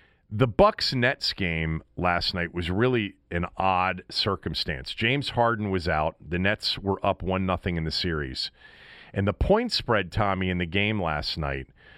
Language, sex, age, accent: English, male, 40-59, American